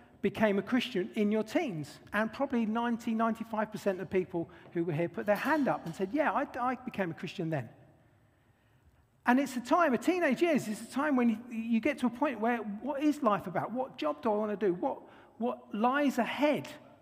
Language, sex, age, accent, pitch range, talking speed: English, male, 50-69, British, 160-240 Hz, 210 wpm